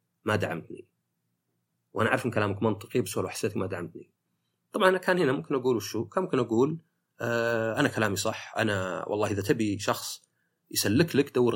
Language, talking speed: Arabic, 175 wpm